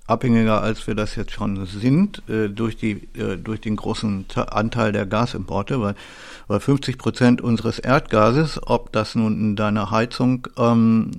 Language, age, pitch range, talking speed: German, 50-69, 110-130 Hz, 165 wpm